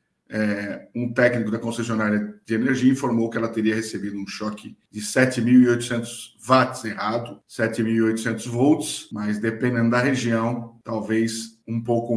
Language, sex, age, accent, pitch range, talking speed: Portuguese, male, 50-69, Brazilian, 110-125 Hz, 130 wpm